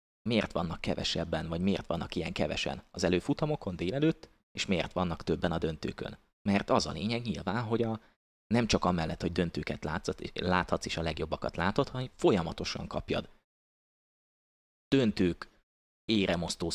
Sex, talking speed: male, 145 wpm